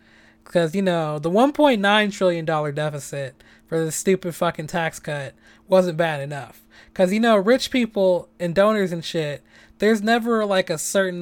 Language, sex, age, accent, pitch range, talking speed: English, male, 20-39, American, 155-200 Hz, 165 wpm